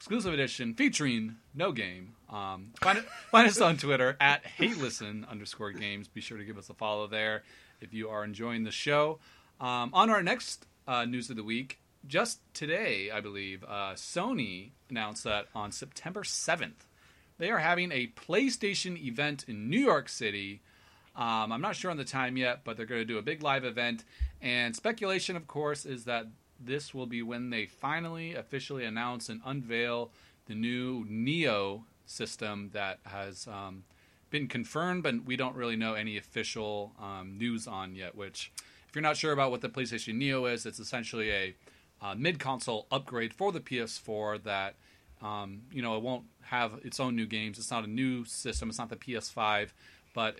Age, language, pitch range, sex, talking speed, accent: 30-49, English, 105-130 Hz, male, 185 wpm, American